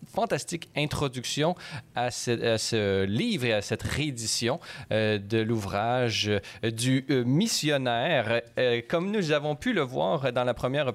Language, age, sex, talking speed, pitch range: French, 30-49, male, 150 wpm, 110-155 Hz